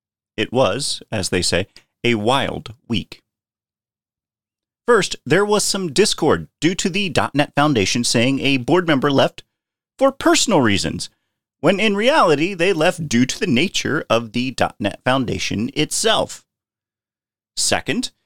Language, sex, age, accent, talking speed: English, male, 30-49, American, 135 wpm